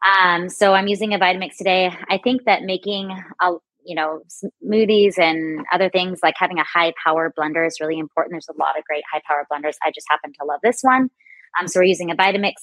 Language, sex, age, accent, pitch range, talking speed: English, female, 20-39, American, 165-190 Hz, 230 wpm